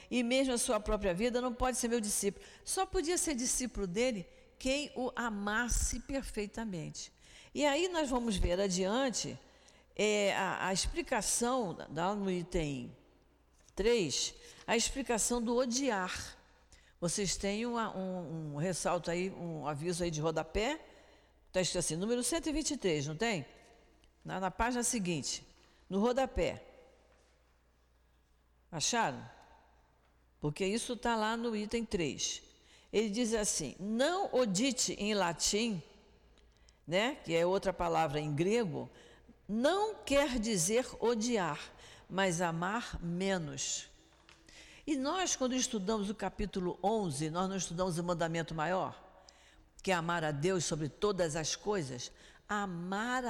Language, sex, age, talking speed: Portuguese, female, 50-69, 125 wpm